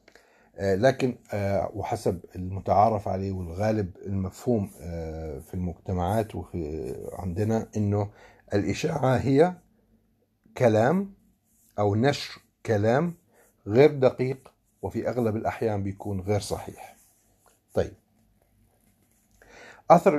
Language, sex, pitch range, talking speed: Arabic, male, 100-120 Hz, 75 wpm